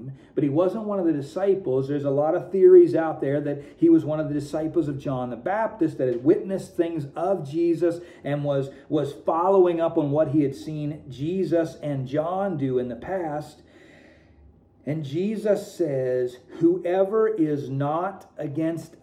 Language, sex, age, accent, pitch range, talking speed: English, male, 40-59, American, 140-180 Hz, 175 wpm